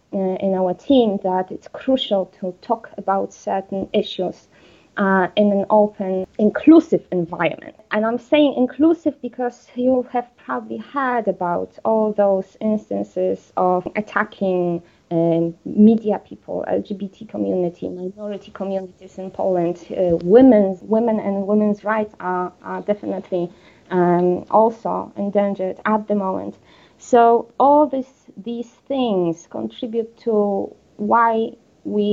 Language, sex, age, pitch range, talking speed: English, female, 20-39, 185-225 Hz, 120 wpm